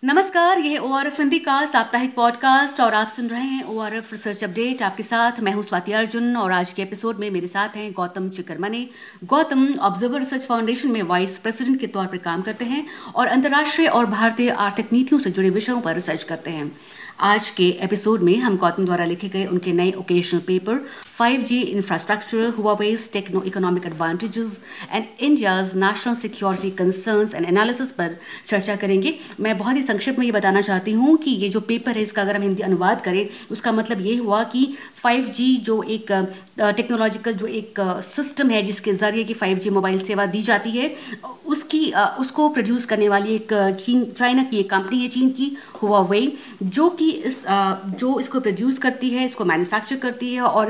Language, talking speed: English, 135 wpm